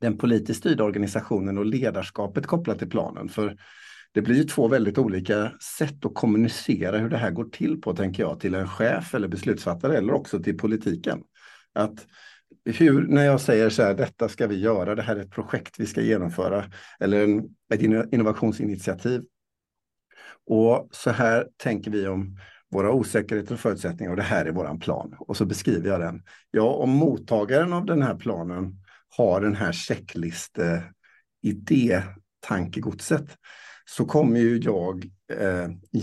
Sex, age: male, 50-69